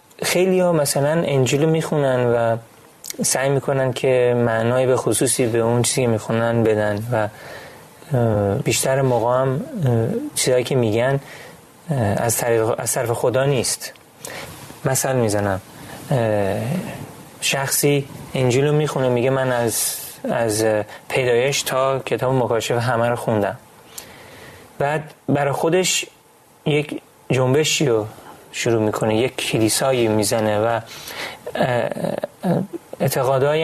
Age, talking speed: 30-49, 100 wpm